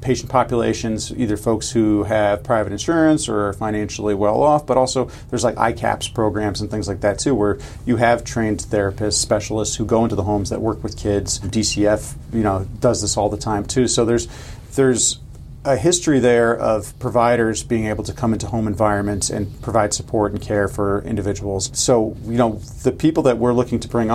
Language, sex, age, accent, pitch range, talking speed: English, male, 40-59, American, 100-115 Hz, 200 wpm